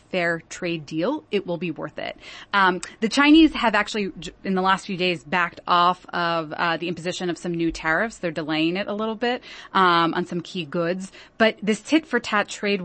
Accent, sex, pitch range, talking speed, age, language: American, female, 170-200 Hz, 210 wpm, 20-39, English